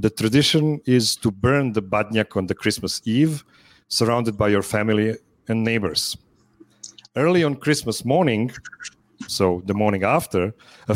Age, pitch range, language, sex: 40-59, 105-135 Hz, English, male